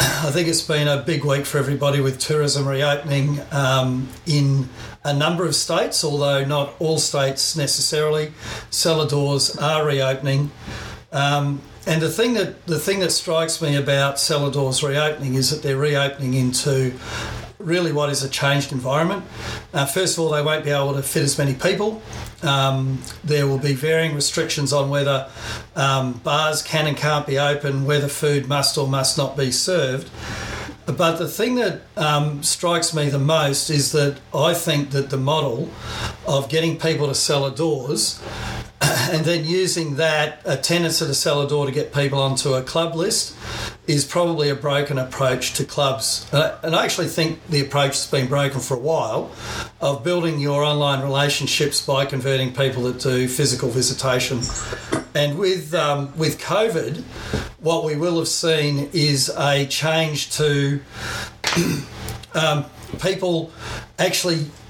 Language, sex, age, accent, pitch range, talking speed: English, male, 50-69, Australian, 135-155 Hz, 160 wpm